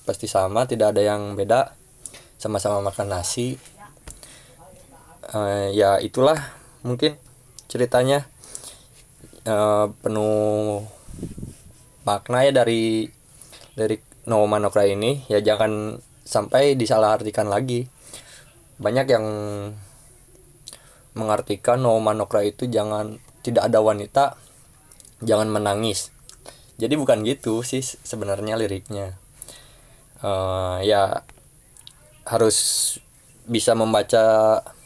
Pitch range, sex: 105-125 Hz, male